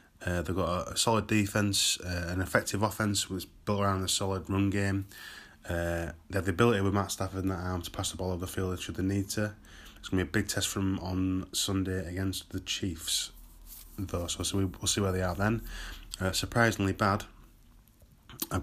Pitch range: 90-105 Hz